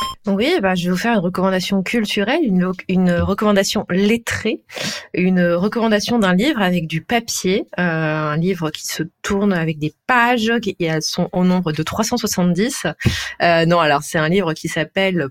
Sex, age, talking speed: female, 20-39, 175 wpm